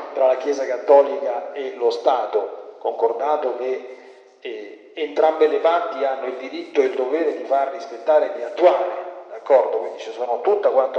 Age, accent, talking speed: 40-59, native, 170 wpm